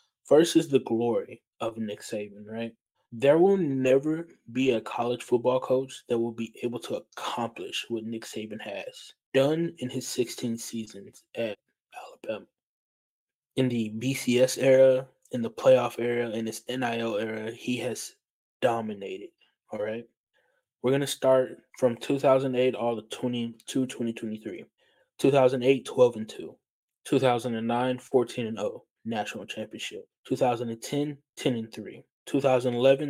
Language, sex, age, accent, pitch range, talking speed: English, male, 20-39, American, 115-135 Hz, 130 wpm